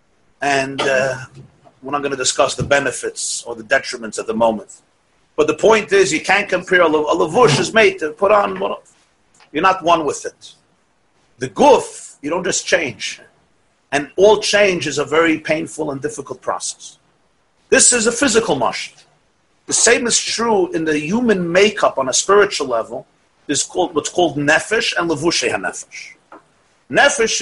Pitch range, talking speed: 155-215 Hz, 170 wpm